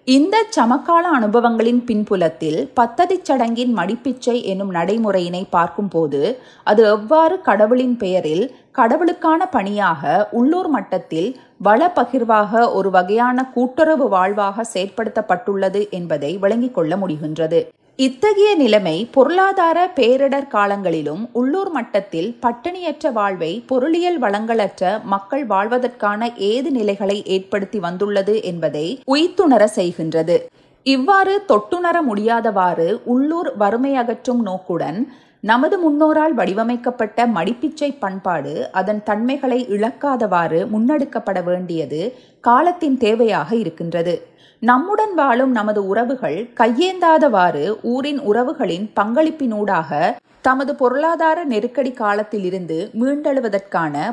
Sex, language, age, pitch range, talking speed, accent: female, Tamil, 30-49, 195-270 Hz, 90 wpm, native